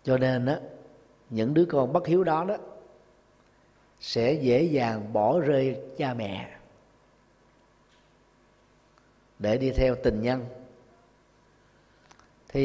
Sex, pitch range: male, 110-150 Hz